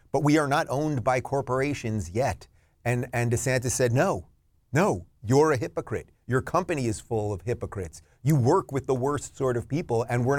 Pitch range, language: 105-135 Hz, English